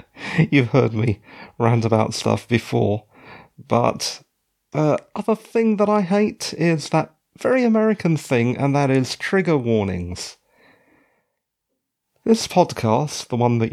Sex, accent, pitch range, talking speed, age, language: male, British, 110-160 Hz, 130 wpm, 40-59, English